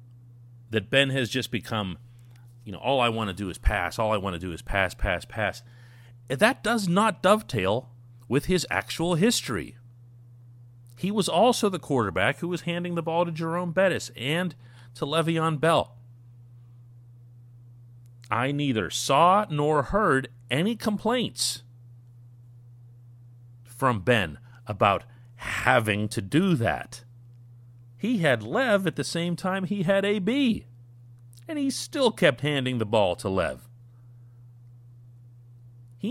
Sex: male